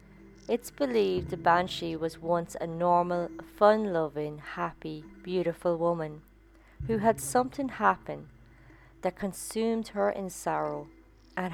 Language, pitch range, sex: English, 155-195 Hz, female